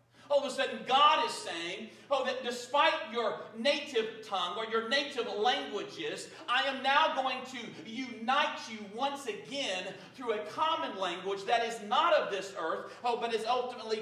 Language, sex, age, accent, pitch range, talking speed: English, male, 40-59, American, 220-285 Hz, 170 wpm